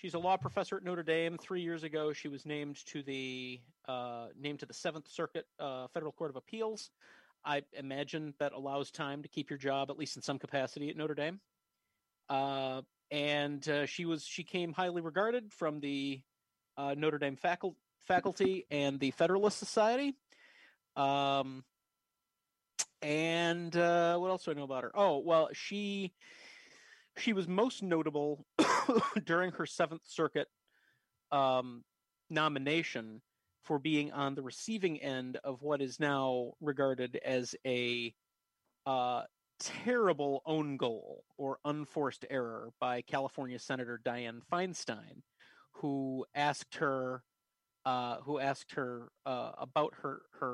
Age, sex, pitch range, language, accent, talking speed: 40-59, male, 130-170 Hz, English, American, 140 wpm